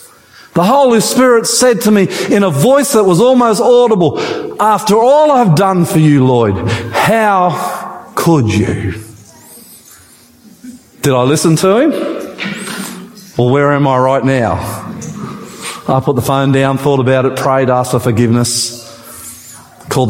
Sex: male